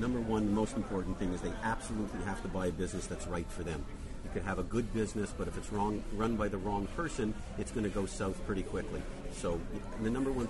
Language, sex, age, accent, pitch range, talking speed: English, male, 50-69, American, 100-125 Hz, 245 wpm